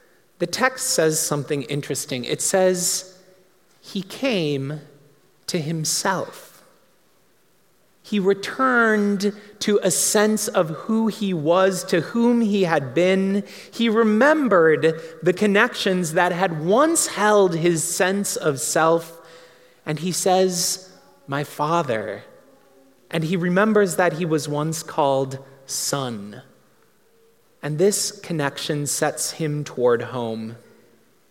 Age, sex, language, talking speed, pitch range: 30-49, male, English, 110 wpm, 145-195 Hz